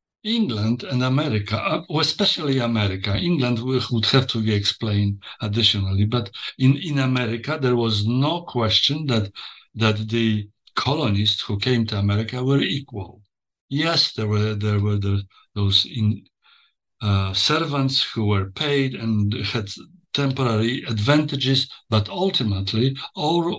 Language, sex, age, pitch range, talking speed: English, male, 60-79, 105-135 Hz, 125 wpm